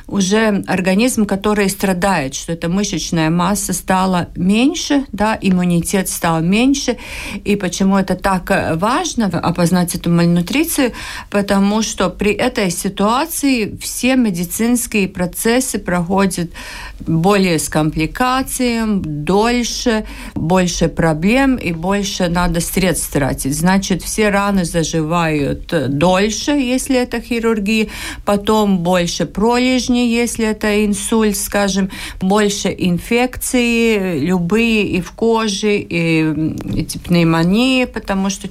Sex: female